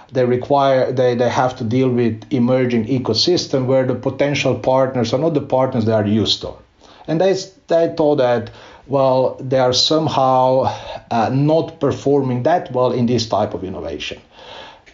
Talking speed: 165 wpm